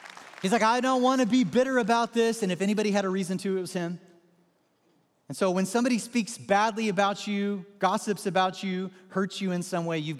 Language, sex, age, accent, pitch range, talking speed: English, male, 30-49, American, 145-195 Hz, 220 wpm